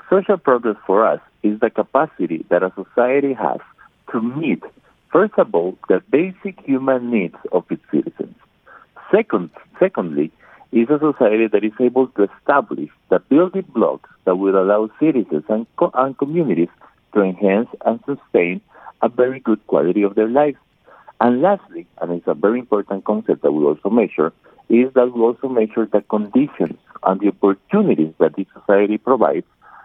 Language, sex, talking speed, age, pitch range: English, male, 165 wpm, 50-69, 95-130 Hz